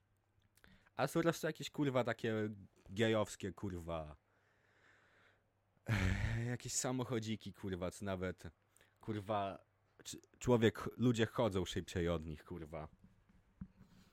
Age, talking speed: 30-49, 95 wpm